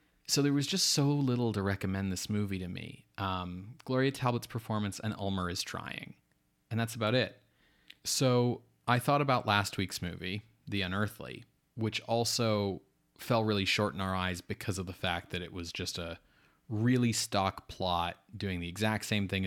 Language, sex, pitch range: English, male, 95-125 Hz